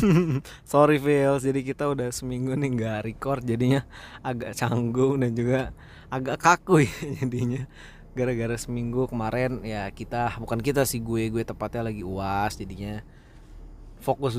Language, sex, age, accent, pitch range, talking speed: Indonesian, male, 20-39, native, 110-140 Hz, 140 wpm